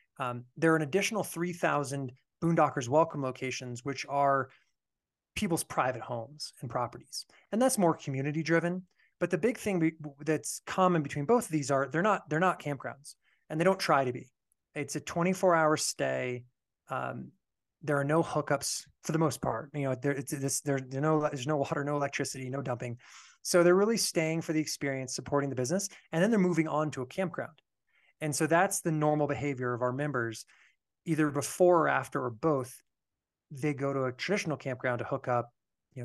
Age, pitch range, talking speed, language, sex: 20-39, 125-165 Hz, 185 wpm, English, male